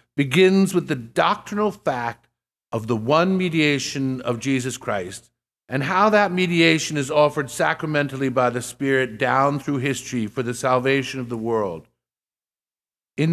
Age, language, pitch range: 50-69, English, 120-150 Hz